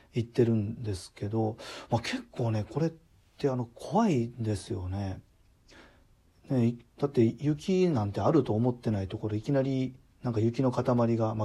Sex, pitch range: male, 110-135 Hz